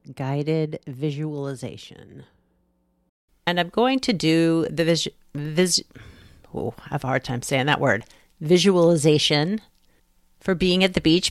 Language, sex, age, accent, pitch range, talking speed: English, female, 40-59, American, 125-180 Hz, 135 wpm